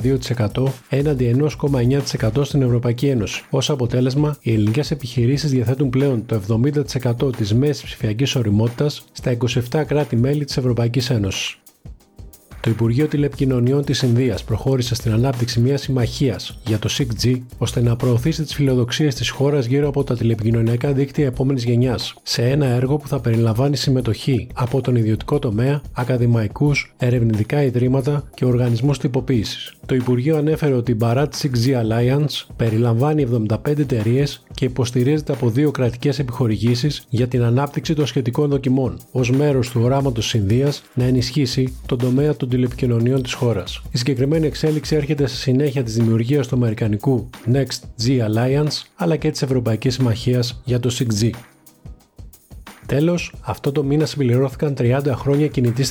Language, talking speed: Greek, 145 wpm